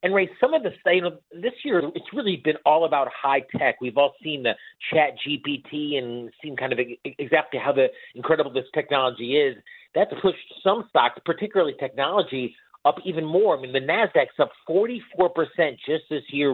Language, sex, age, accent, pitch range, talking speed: English, male, 40-59, American, 125-170 Hz, 190 wpm